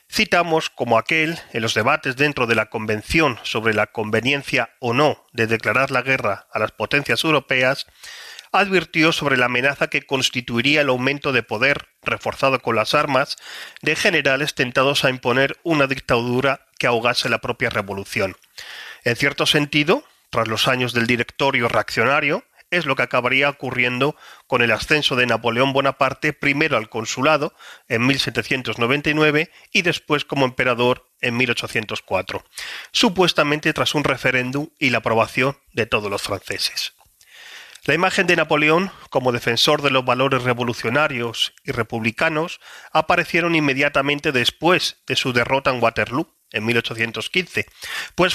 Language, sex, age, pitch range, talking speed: Spanish, male, 40-59, 120-150 Hz, 140 wpm